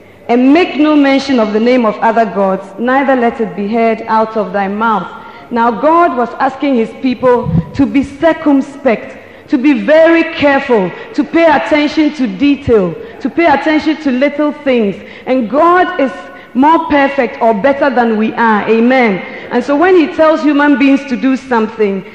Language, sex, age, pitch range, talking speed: English, female, 40-59, 230-290 Hz, 175 wpm